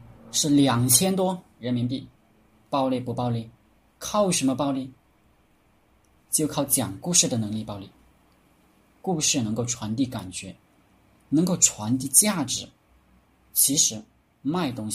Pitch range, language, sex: 110-145 Hz, Chinese, male